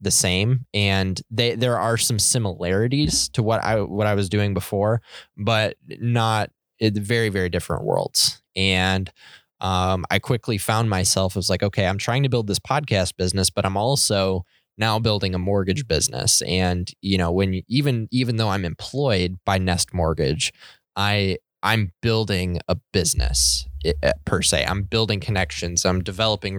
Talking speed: 160 wpm